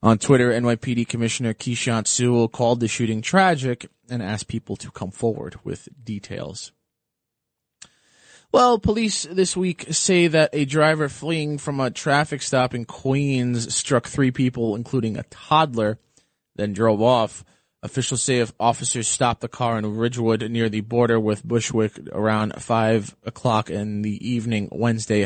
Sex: male